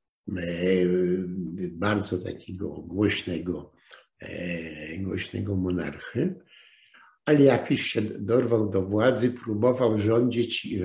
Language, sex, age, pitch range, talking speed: Polish, male, 60-79, 95-125 Hz, 75 wpm